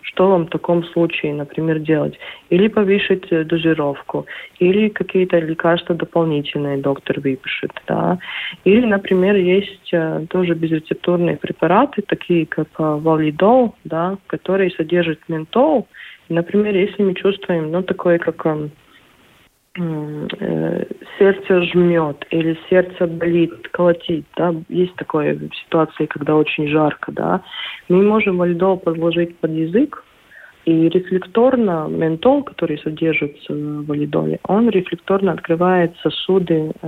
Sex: female